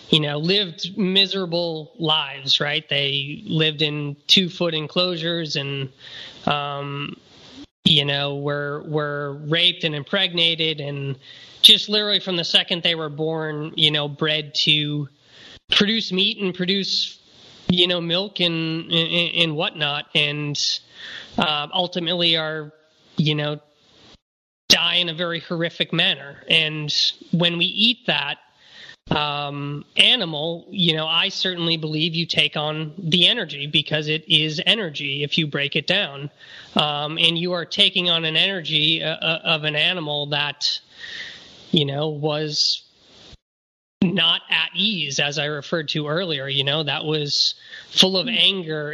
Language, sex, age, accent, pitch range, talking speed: English, male, 20-39, American, 145-180 Hz, 140 wpm